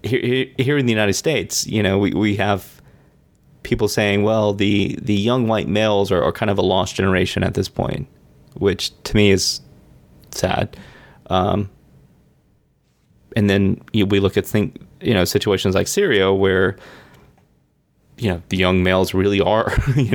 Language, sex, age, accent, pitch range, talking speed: English, male, 30-49, American, 95-110 Hz, 160 wpm